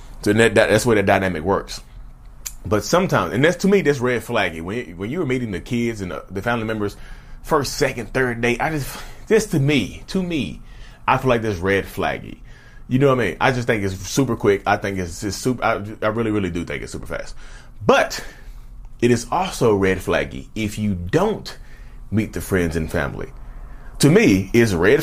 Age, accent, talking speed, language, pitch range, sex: 30-49, American, 215 wpm, English, 100-140 Hz, male